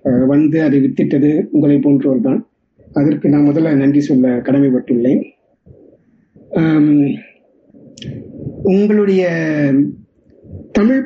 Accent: native